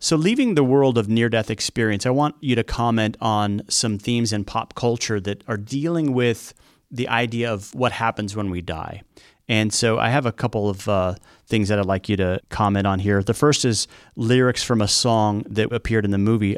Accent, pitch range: American, 95-115 Hz